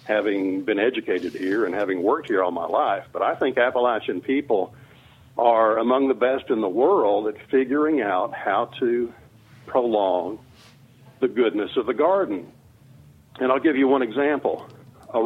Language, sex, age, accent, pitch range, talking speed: English, male, 50-69, American, 120-150 Hz, 160 wpm